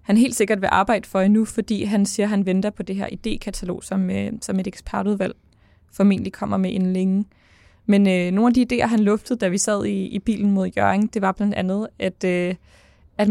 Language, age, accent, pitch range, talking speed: Danish, 20-39, native, 185-210 Hz, 220 wpm